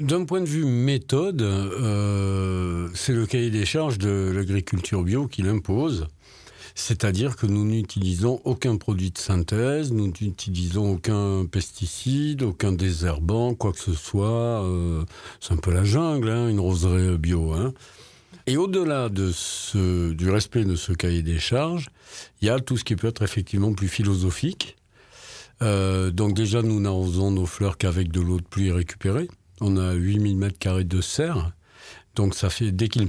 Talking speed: 165 wpm